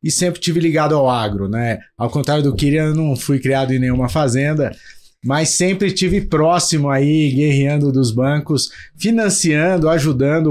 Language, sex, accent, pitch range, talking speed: Portuguese, male, Brazilian, 135-165 Hz, 160 wpm